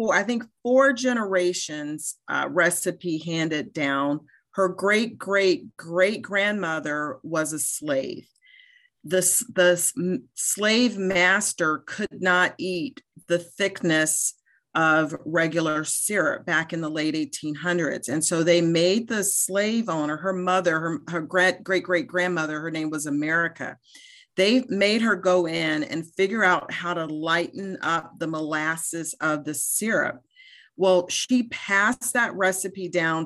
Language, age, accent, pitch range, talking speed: English, 40-59, American, 160-200 Hz, 130 wpm